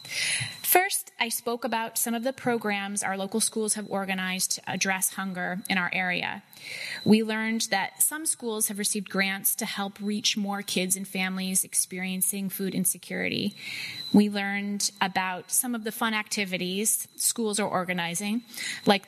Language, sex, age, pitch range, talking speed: English, female, 20-39, 190-220 Hz, 155 wpm